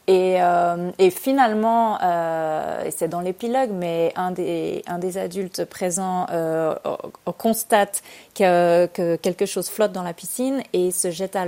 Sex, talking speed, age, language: female, 150 wpm, 30-49, French